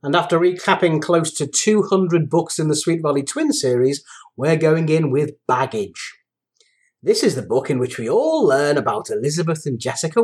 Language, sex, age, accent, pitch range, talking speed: English, male, 30-49, British, 145-195 Hz, 180 wpm